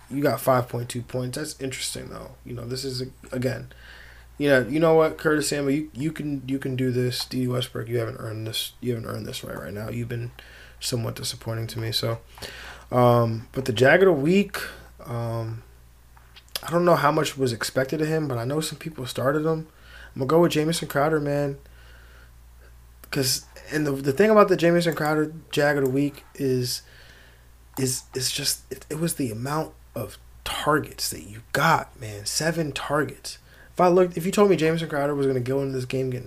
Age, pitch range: 20-39, 115-155 Hz